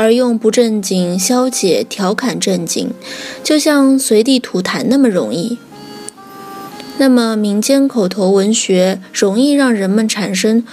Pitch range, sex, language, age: 205-265 Hz, female, Chinese, 20-39